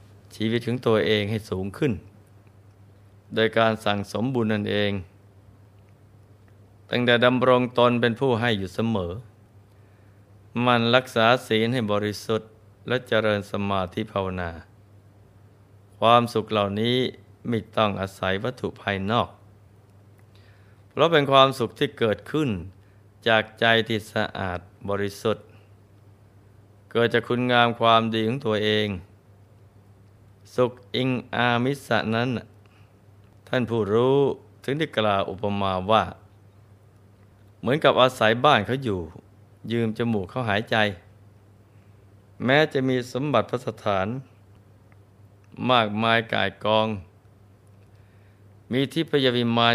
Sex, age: male, 20-39